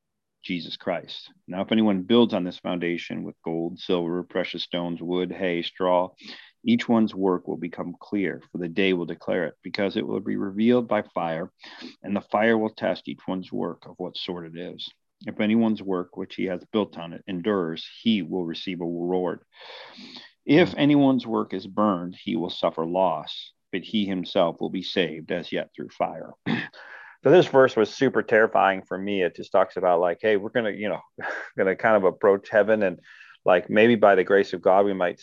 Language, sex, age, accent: English, male, 40-59, American